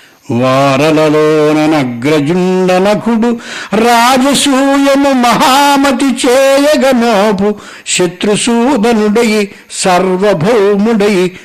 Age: 60-79